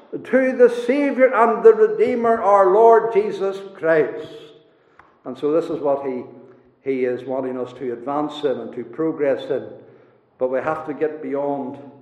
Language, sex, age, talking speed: English, male, 60-79, 165 wpm